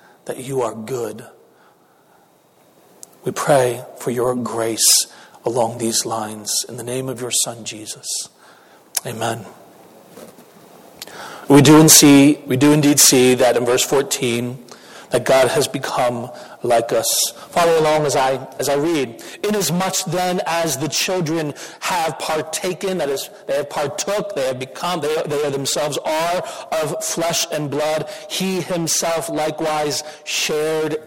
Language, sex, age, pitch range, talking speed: English, male, 40-59, 150-195 Hz, 145 wpm